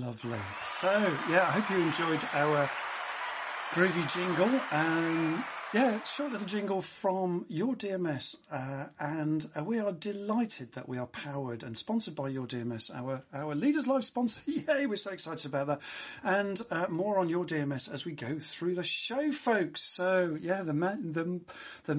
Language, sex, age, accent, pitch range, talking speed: English, male, 40-59, British, 140-200 Hz, 170 wpm